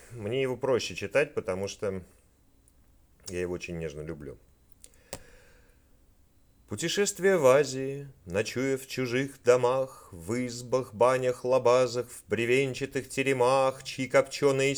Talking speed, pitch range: 110 wpm, 120-135 Hz